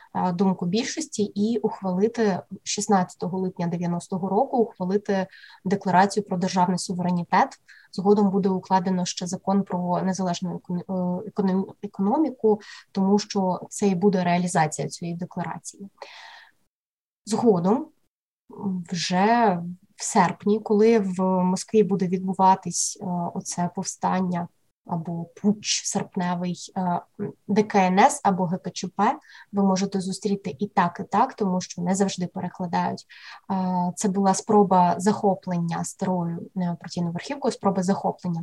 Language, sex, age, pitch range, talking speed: Ukrainian, female, 20-39, 180-210 Hz, 105 wpm